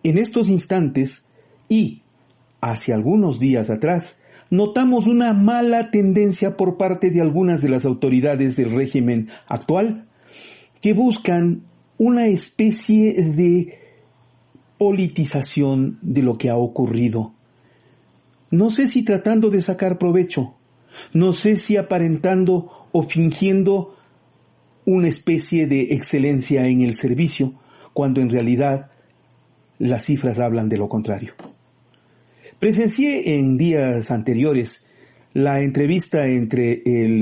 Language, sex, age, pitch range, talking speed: Spanish, male, 50-69, 125-180 Hz, 115 wpm